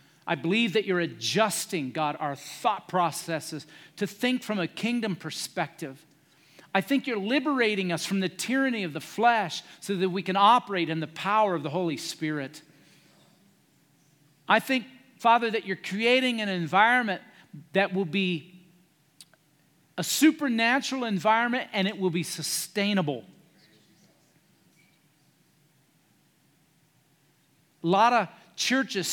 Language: English